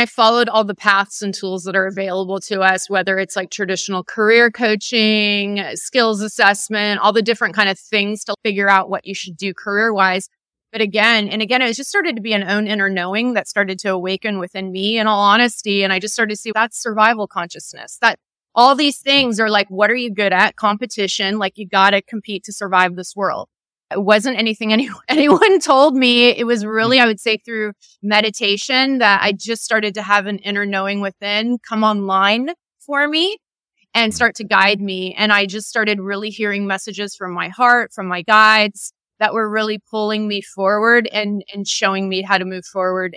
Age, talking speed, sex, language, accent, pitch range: 30-49, 205 wpm, female, English, American, 200-225 Hz